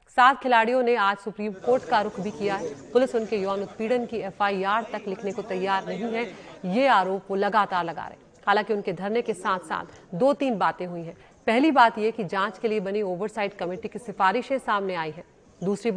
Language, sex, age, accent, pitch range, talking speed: Hindi, female, 30-49, native, 195-235 Hz, 65 wpm